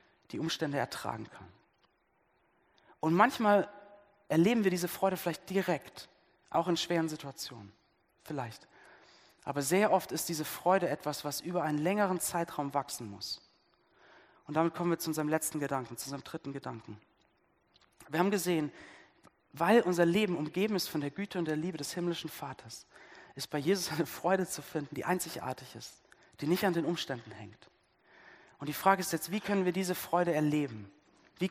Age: 40-59